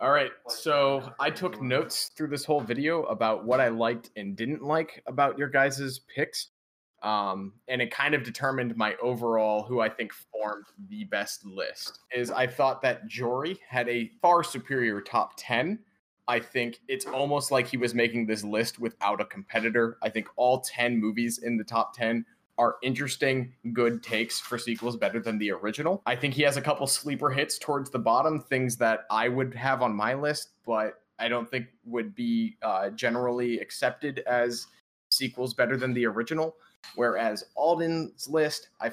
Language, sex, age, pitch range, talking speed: English, male, 20-39, 115-140 Hz, 180 wpm